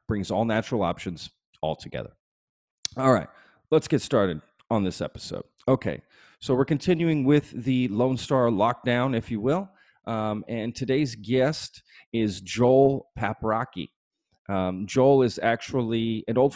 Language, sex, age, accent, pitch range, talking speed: English, male, 30-49, American, 100-125 Hz, 140 wpm